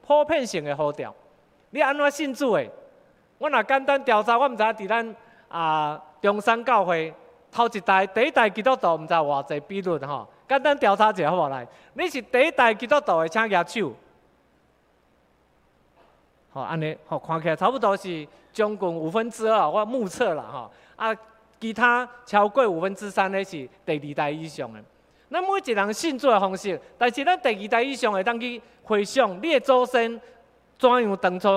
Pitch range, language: 160-235 Hz, Chinese